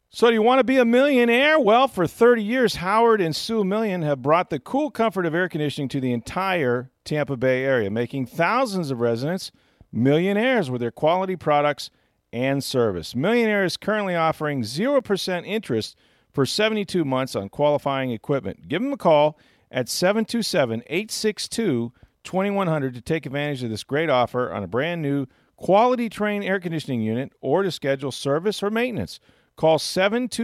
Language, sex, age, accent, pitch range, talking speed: English, male, 40-59, American, 120-190 Hz, 165 wpm